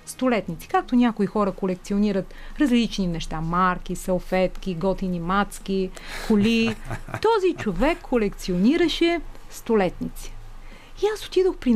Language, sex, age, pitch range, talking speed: Bulgarian, female, 30-49, 190-255 Hz, 100 wpm